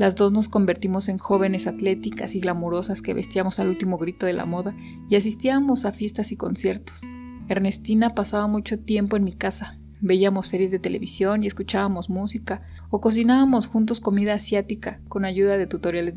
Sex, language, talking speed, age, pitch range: female, Spanish, 170 wpm, 20-39, 185-210 Hz